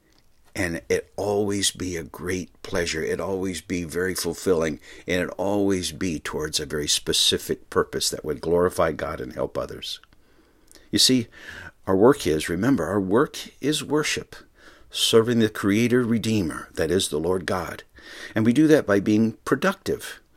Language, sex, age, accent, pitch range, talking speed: English, male, 60-79, American, 90-120 Hz, 160 wpm